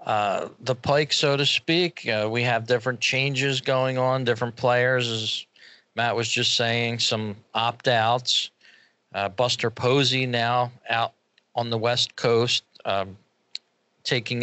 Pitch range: 110-130 Hz